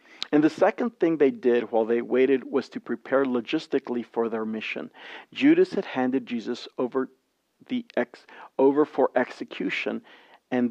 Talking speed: 150 wpm